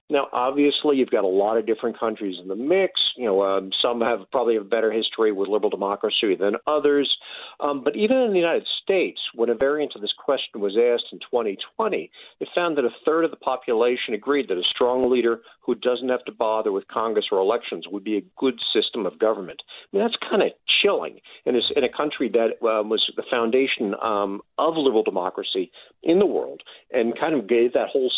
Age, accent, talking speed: 50-69, American, 215 wpm